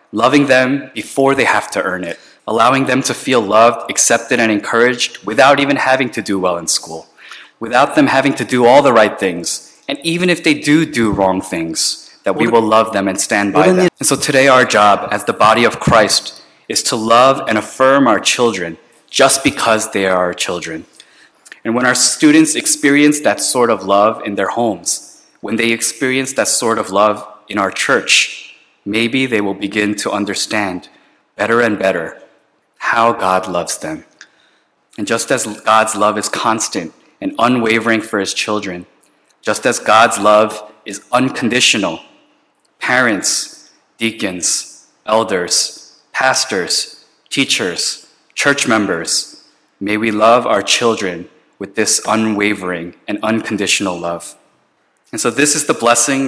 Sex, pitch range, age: male, 100-130 Hz, 20-39